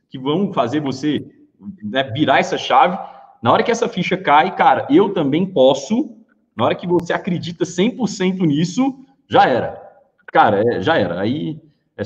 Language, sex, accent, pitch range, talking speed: Portuguese, male, Brazilian, 155-220 Hz, 165 wpm